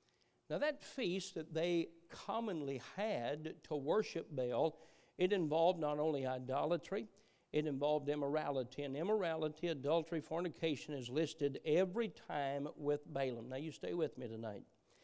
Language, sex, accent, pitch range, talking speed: English, male, American, 155-235 Hz, 135 wpm